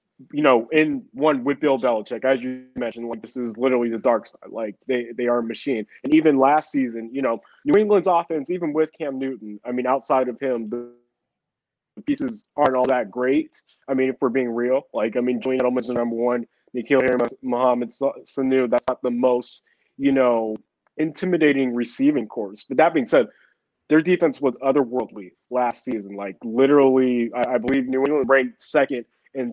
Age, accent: 20-39, American